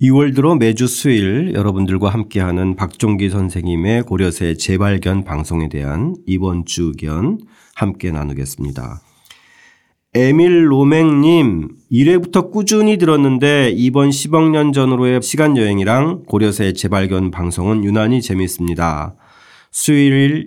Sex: male